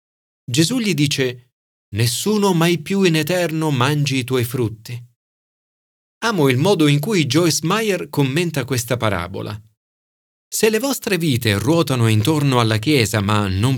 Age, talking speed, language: 40-59, 140 wpm, Italian